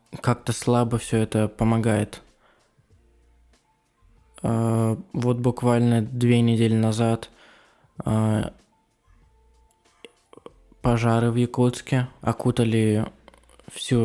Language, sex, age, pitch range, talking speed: Russian, male, 20-39, 110-120 Hz, 75 wpm